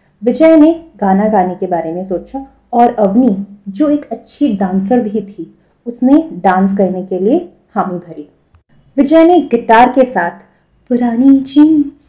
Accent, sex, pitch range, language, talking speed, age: native, female, 195-265 Hz, Hindi, 145 wpm, 30-49